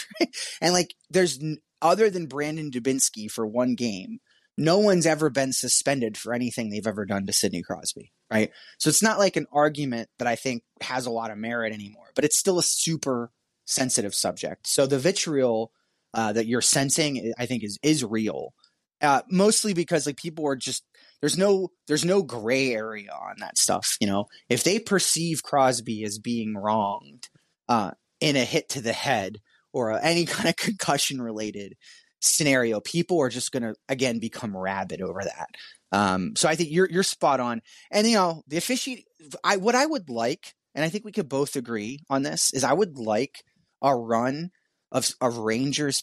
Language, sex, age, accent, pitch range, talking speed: English, male, 20-39, American, 115-170 Hz, 185 wpm